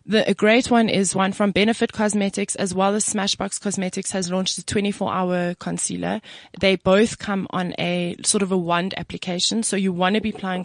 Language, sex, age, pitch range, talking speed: English, female, 20-39, 180-220 Hz, 195 wpm